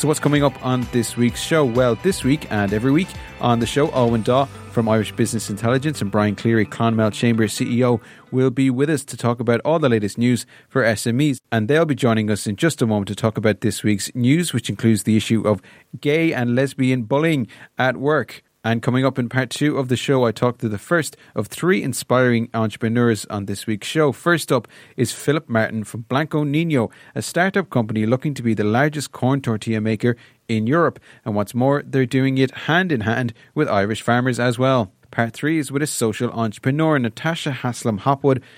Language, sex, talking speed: English, male, 210 wpm